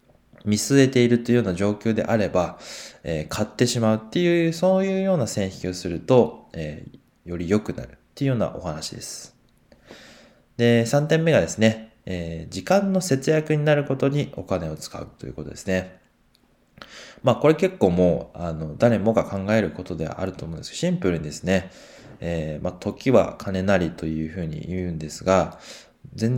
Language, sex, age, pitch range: Japanese, male, 20-39, 85-120 Hz